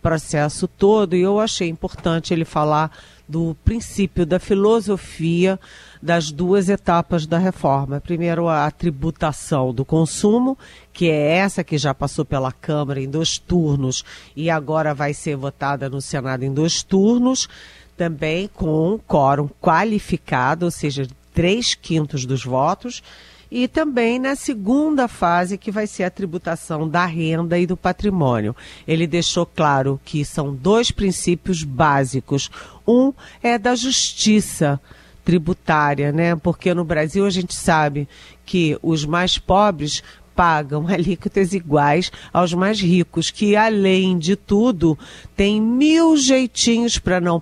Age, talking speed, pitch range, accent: 50-69, 135 wpm, 150-195 Hz, Brazilian